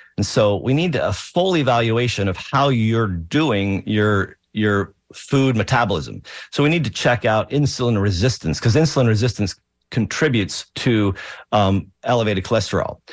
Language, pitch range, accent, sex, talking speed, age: English, 95-125 Hz, American, male, 140 wpm, 50-69